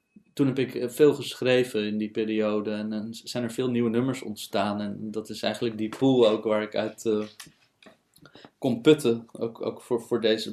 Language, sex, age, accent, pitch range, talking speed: Dutch, male, 20-39, Dutch, 110-120 Hz, 195 wpm